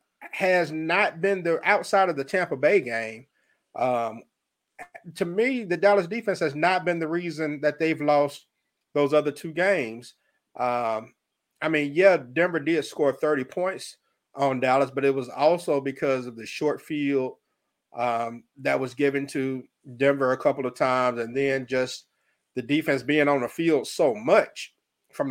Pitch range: 135-160 Hz